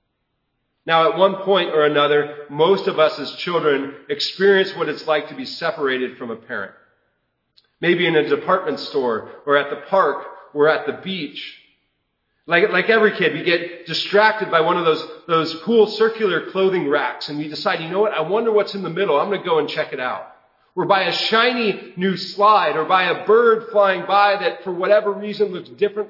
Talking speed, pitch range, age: 200 wpm, 155-210 Hz, 40-59